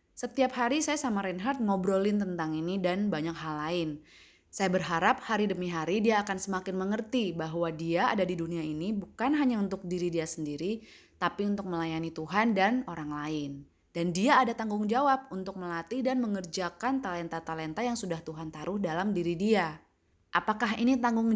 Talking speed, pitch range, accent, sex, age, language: 170 wpm, 165-215 Hz, native, female, 20-39, Indonesian